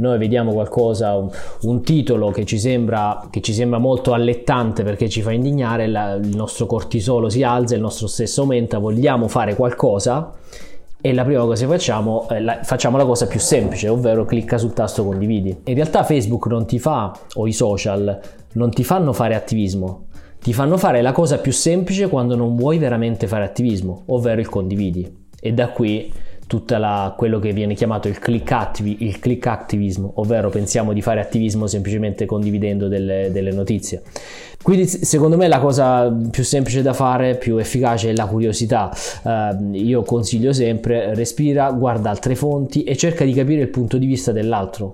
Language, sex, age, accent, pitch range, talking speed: Italian, male, 20-39, native, 105-130 Hz, 170 wpm